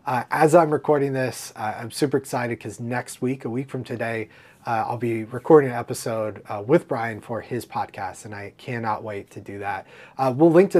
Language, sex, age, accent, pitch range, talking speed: English, male, 20-39, American, 110-135 Hz, 215 wpm